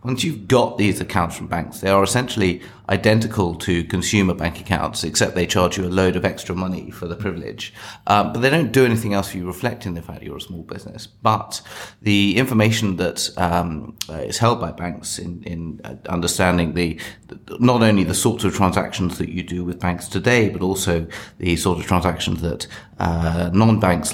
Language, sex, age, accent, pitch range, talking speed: English, male, 30-49, British, 85-105 Hz, 190 wpm